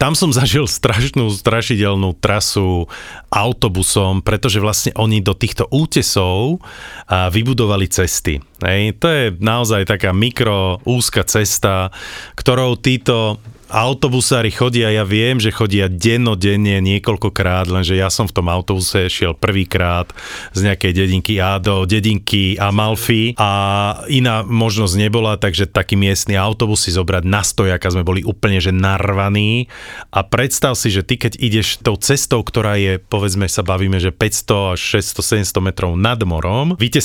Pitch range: 100-125 Hz